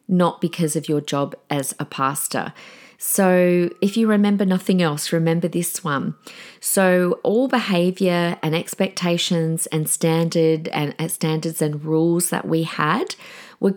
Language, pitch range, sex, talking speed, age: English, 150-195 Hz, female, 140 wpm, 40-59